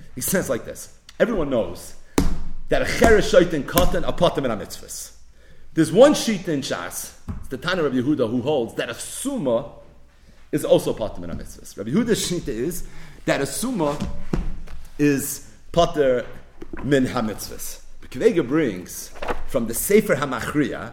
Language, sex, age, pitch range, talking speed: English, male, 40-59, 125-205 Hz, 145 wpm